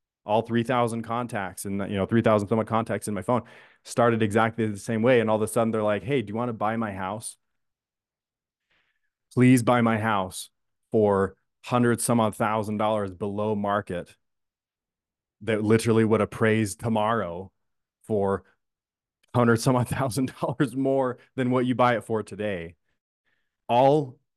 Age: 20-39